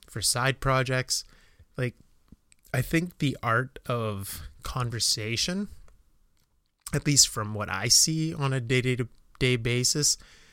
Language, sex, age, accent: English, male, 30-49, American